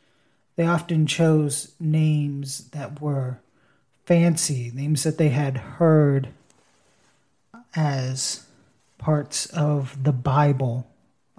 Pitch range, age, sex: 135-155 Hz, 30-49, male